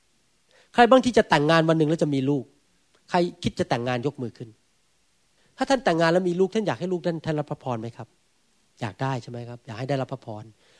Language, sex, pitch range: Thai, male, 125-195 Hz